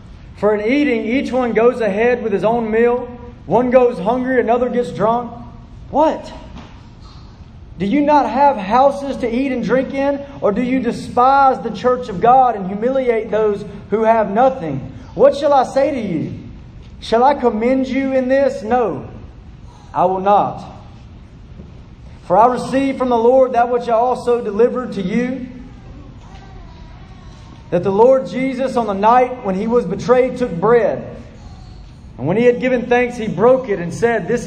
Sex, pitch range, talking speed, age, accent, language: male, 215-250 Hz, 165 wpm, 30-49, American, English